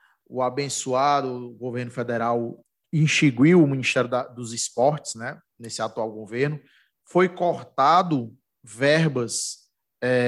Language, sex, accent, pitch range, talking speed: English, male, Brazilian, 125-155 Hz, 110 wpm